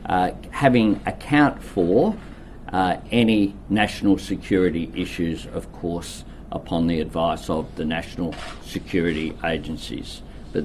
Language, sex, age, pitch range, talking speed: Greek, male, 50-69, 80-100 Hz, 115 wpm